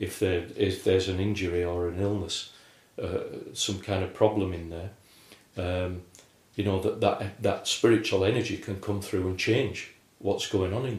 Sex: male